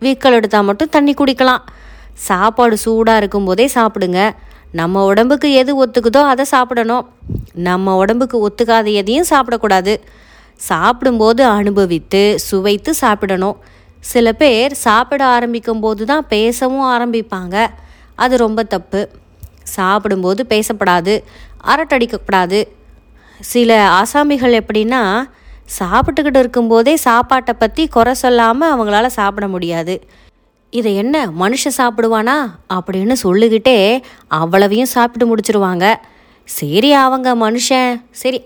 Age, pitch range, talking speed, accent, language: 30-49, 200-255 Hz, 95 wpm, native, Tamil